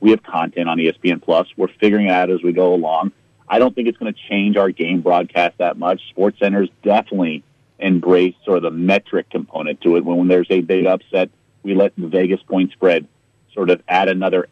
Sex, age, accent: male, 40-59, American